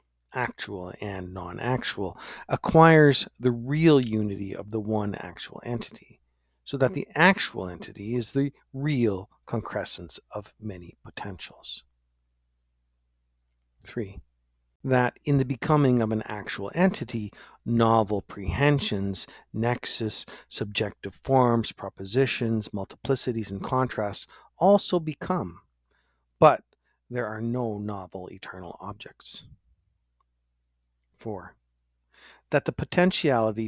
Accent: American